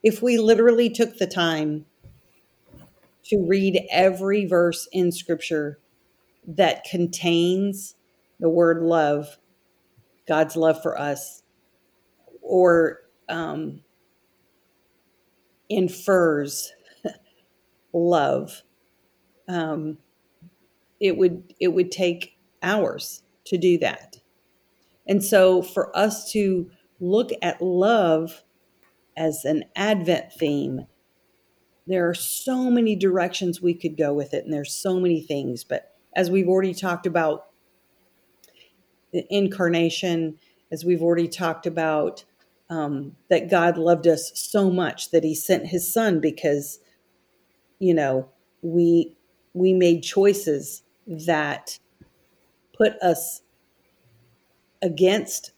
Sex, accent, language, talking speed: female, American, English, 105 wpm